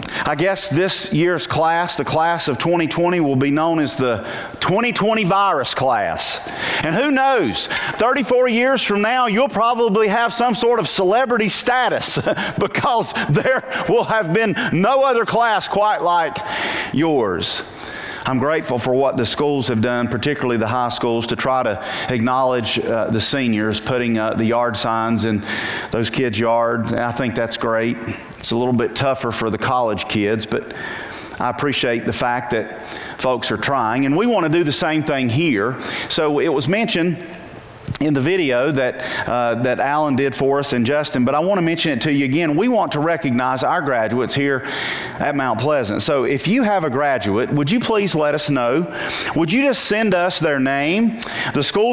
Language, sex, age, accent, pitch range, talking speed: English, male, 40-59, American, 125-180 Hz, 185 wpm